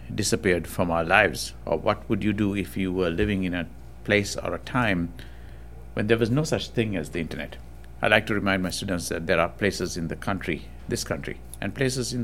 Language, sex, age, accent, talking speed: English, male, 60-79, Indian, 225 wpm